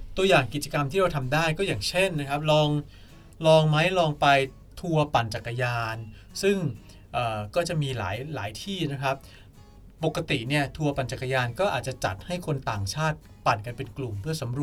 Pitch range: 110-150 Hz